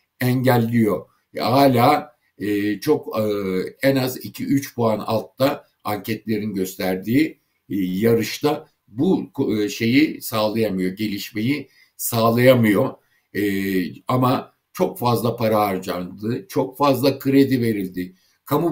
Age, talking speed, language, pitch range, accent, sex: 60-79, 105 wpm, Turkish, 110-145 Hz, native, male